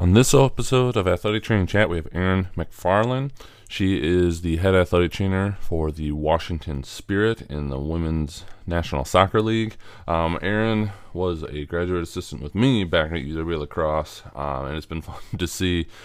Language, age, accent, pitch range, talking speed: English, 20-39, American, 75-95 Hz, 170 wpm